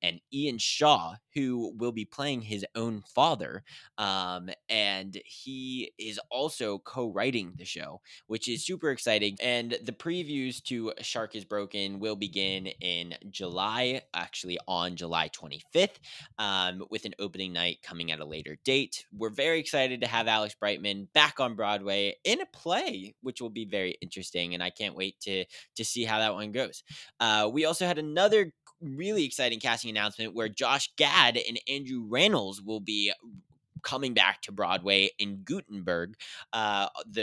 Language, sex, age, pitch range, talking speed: English, male, 20-39, 95-120 Hz, 165 wpm